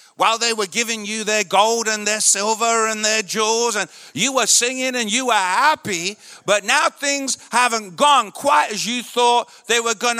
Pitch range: 220-295 Hz